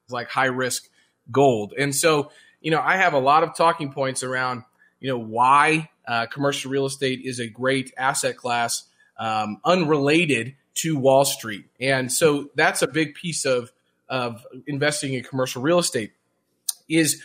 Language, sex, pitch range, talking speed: English, male, 125-155 Hz, 165 wpm